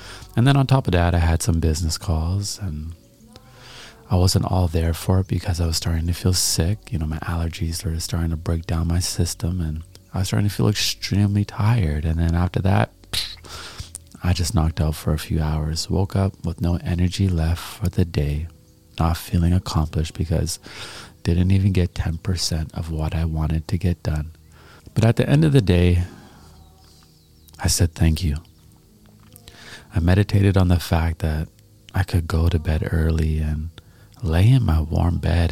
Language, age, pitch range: English, 30-49, 80-95 Hz